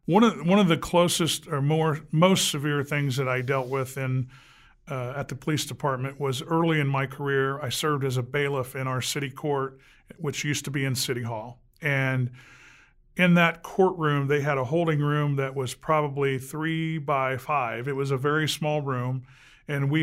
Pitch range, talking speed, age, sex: 135-155 Hz, 195 wpm, 40-59, male